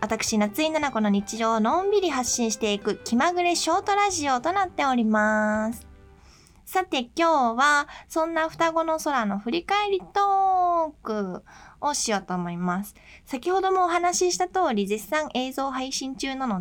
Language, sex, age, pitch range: Japanese, female, 20-39, 205-305 Hz